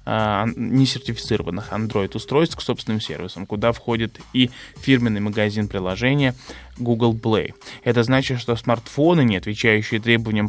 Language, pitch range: Russian, 110-130 Hz